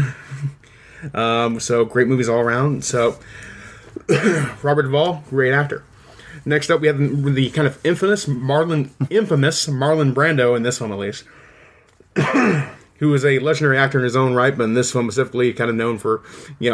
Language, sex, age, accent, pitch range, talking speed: English, male, 20-39, American, 115-145 Hz, 170 wpm